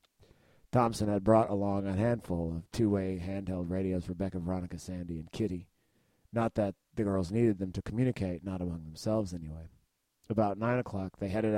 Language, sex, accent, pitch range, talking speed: English, male, American, 90-110 Hz, 170 wpm